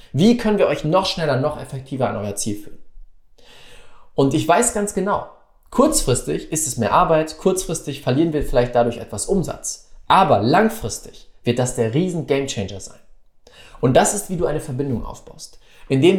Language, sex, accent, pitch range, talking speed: German, male, German, 125-180 Hz, 175 wpm